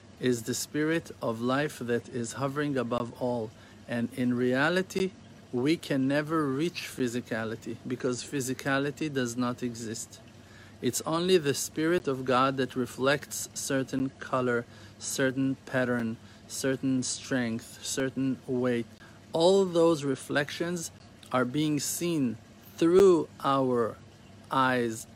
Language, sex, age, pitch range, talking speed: English, male, 50-69, 115-135 Hz, 115 wpm